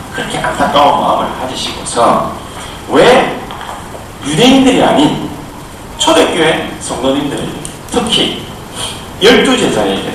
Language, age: Korean, 40-59